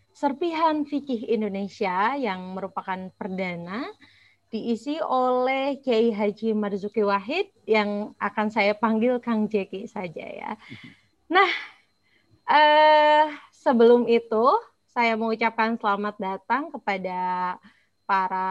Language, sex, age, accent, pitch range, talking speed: Indonesian, female, 30-49, native, 200-270 Hz, 95 wpm